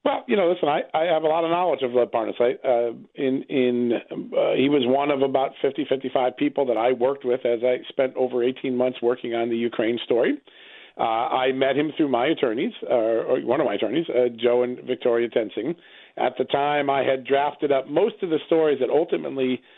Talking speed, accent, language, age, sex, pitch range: 210 wpm, American, English, 40-59, male, 120-145 Hz